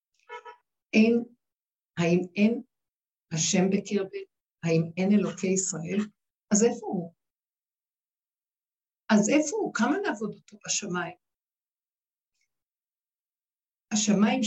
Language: Hebrew